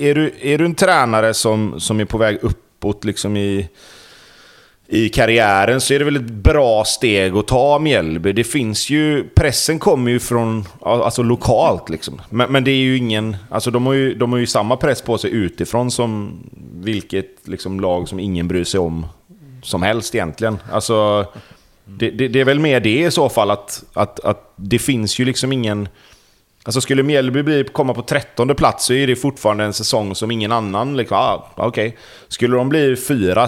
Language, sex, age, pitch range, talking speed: Swedish, male, 30-49, 100-135 Hz, 195 wpm